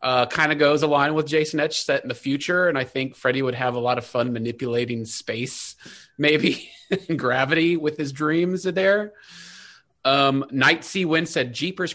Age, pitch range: 30-49, 130-165 Hz